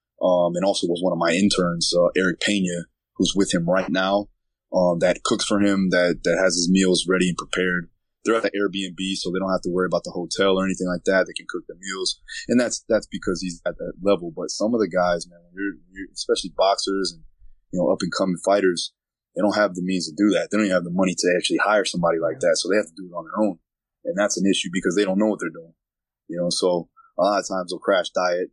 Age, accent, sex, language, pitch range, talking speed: 20-39, American, male, English, 90-100 Hz, 265 wpm